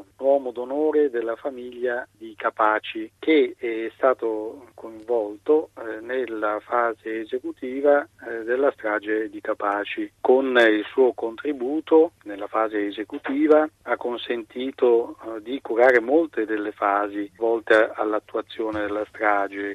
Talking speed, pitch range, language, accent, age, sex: 105 wpm, 105-125 Hz, Italian, native, 40-59, male